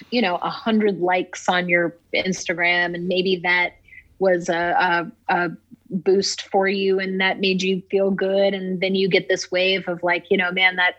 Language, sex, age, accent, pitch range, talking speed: English, female, 30-49, American, 175-200 Hz, 195 wpm